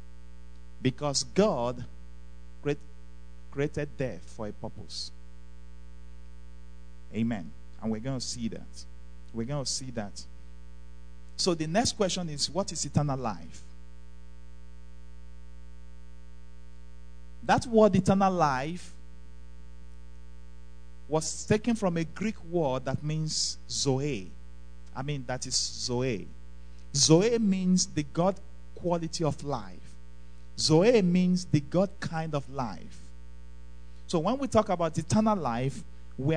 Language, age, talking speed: English, 50-69, 110 wpm